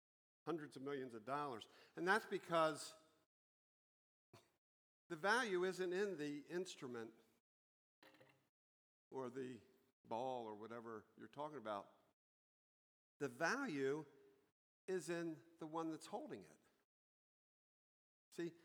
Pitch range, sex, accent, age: 135-185 Hz, male, American, 50-69